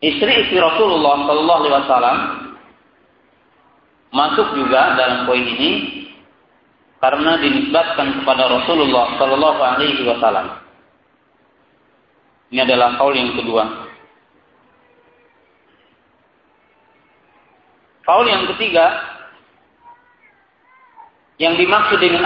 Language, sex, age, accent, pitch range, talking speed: Romanian, male, 40-59, Indonesian, 130-220 Hz, 80 wpm